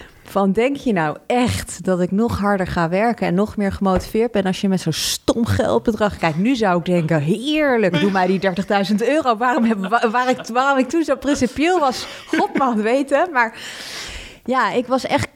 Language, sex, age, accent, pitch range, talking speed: Dutch, female, 30-49, Dutch, 170-220 Hz, 190 wpm